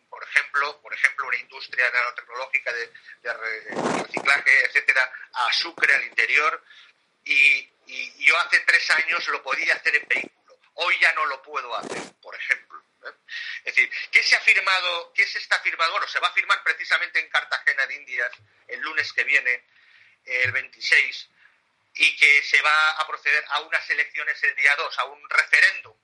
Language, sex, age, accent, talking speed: Spanish, male, 40-59, Spanish, 165 wpm